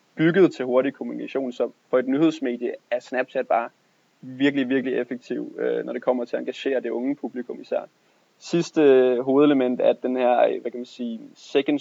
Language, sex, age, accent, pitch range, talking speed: Danish, male, 20-39, native, 125-145 Hz, 175 wpm